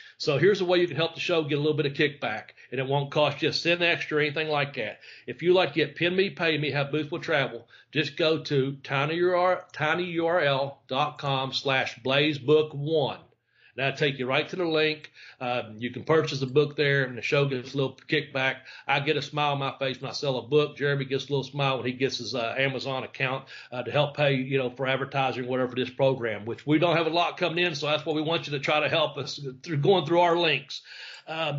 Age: 40-59